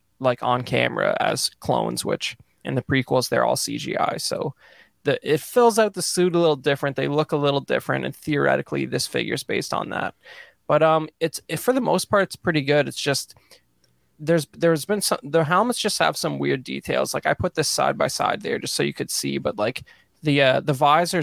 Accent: American